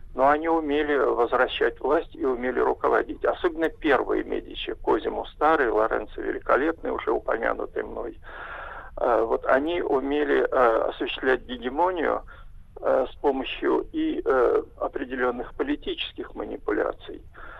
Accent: native